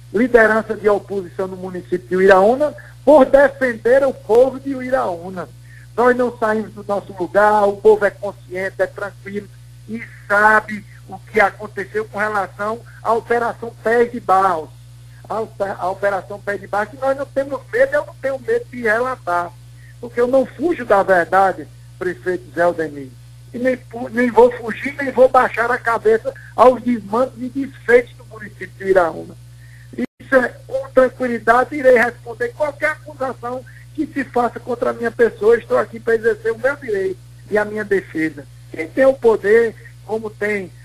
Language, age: English, 60-79